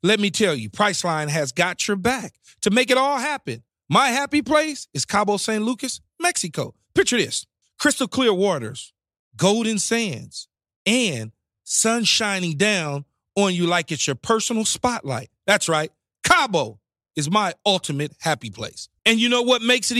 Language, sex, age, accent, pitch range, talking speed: English, male, 40-59, American, 180-255 Hz, 160 wpm